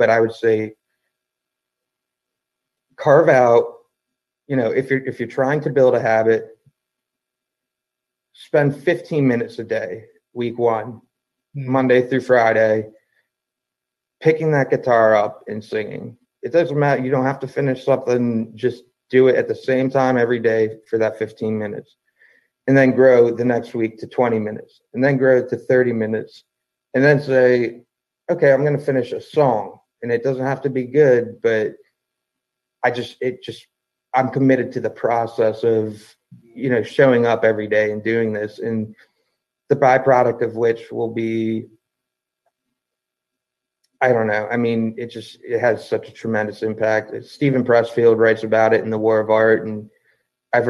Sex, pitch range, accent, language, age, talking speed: male, 110-130 Hz, American, English, 30-49, 165 wpm